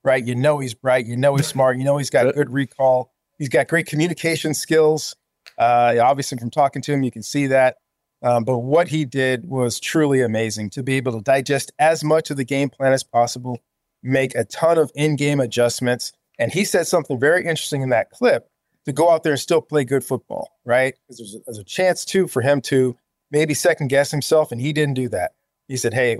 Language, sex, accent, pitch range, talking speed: English, male, American, 125-150 Hz, 225 wpm